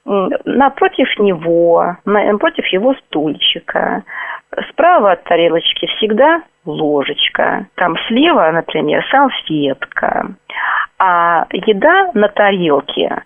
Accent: native